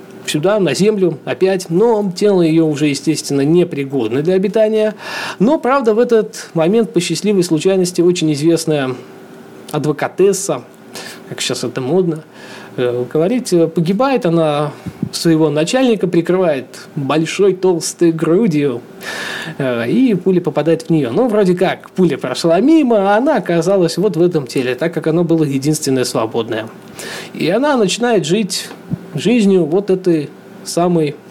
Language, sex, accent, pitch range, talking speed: Russian, male, native, 155-205 Hz, 130 wpm